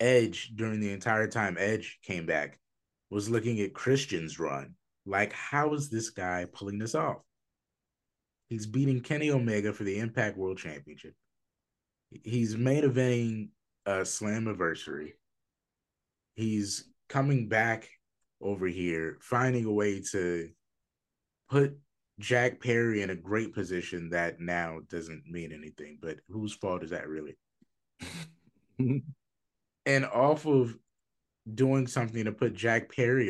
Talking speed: 130 wpm